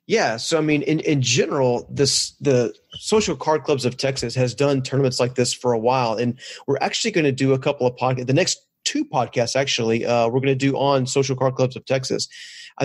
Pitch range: 125-140 Hz